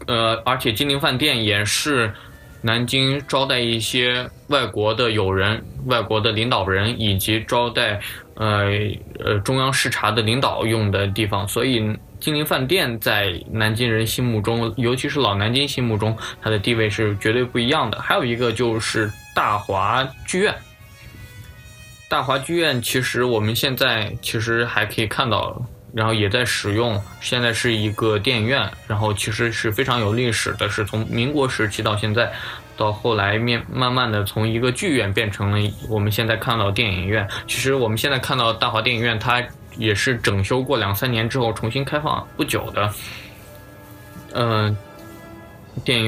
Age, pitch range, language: 20-39, 110-125 Hz, Chinese